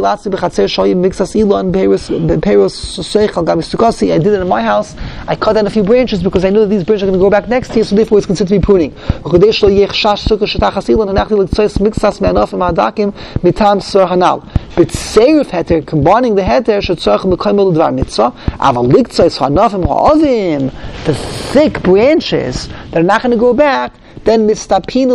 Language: English